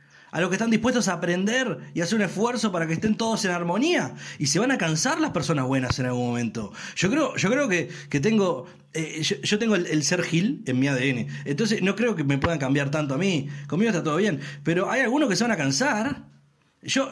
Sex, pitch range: male, 155-230 Hz